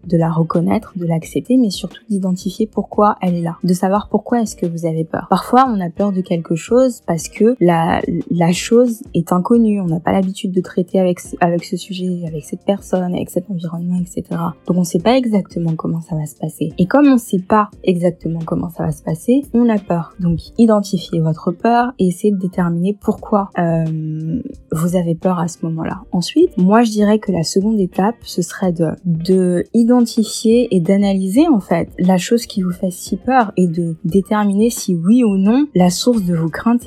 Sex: female